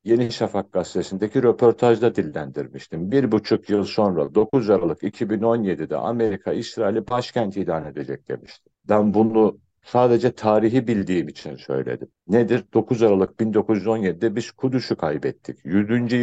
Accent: Turkish